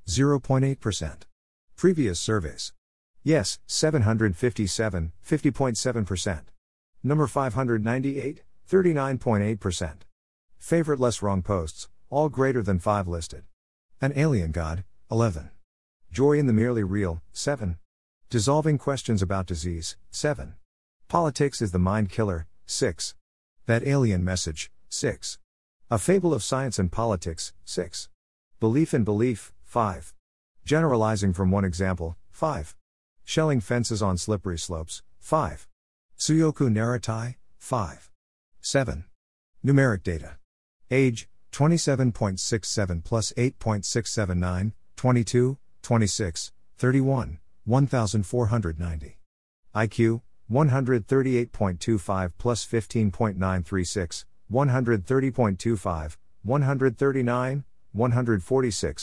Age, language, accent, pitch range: 50-69, English, American, 90-130 Hz